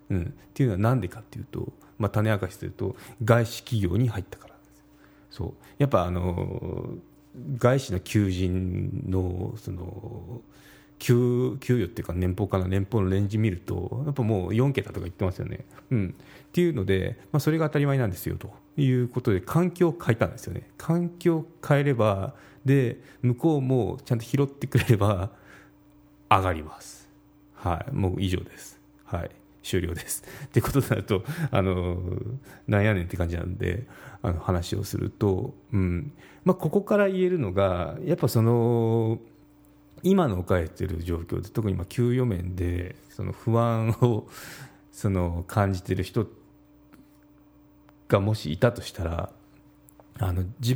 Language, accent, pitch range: Japanese, native, 95-140 Hz